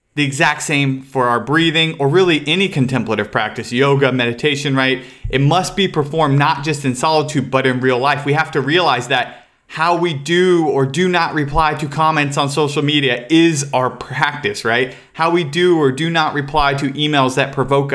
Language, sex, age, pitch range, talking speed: English, male, 30-49, 130-155 Hz, 195 wpm